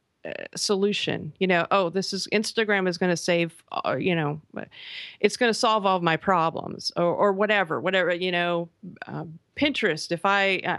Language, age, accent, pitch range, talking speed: English, 40-59, American, 170-205 Hz, 185 wpm